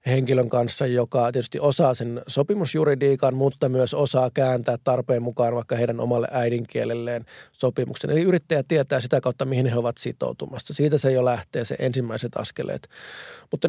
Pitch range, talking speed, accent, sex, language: 120-140 Hz, 155 wpm, native, male, Finnish